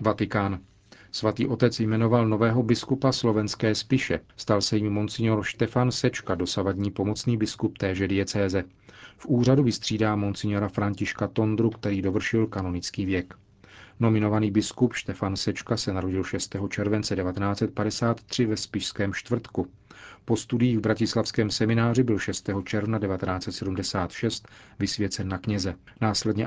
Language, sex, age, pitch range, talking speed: Czech, male, 40-59, 95-115 Hz, 120 wpm